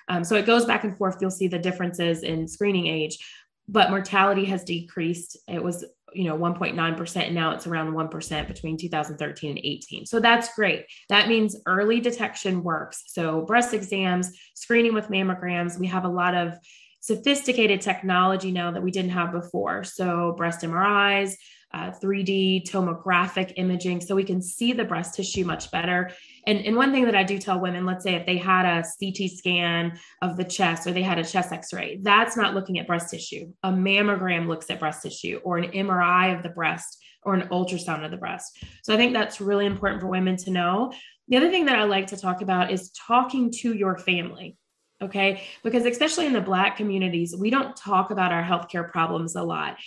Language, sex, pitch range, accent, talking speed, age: English, female, 180-215 Hz, American, 200 wpm, 20-39